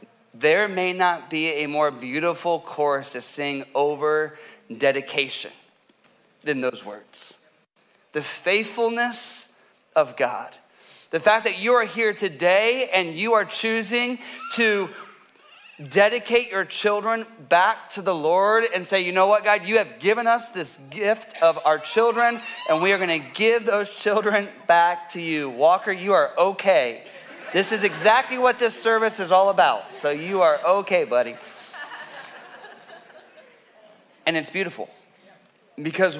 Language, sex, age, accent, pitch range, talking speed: English, male, 30-49, American, 155-215 Hz, 145 wpm